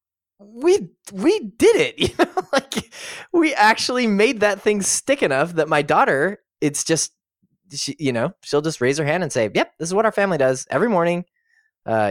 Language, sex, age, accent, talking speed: English, male, 20-39, American, 195 wpm